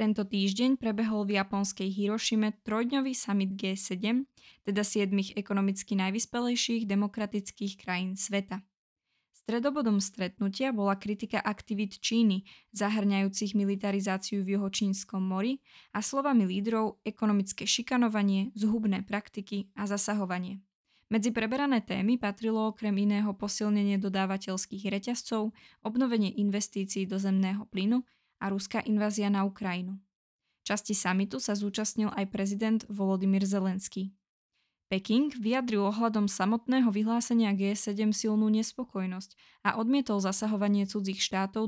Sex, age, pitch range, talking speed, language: female, 20-39, 195-220 Hz, 110 wpm, Czech